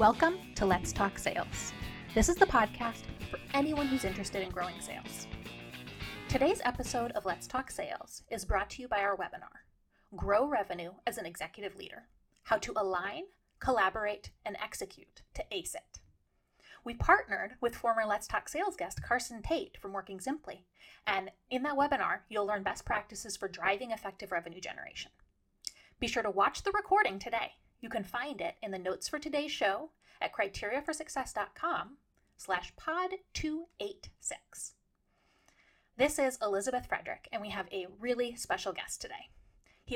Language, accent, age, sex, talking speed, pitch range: English, American, 30-49, female, 155 wpm, 210-305 Hz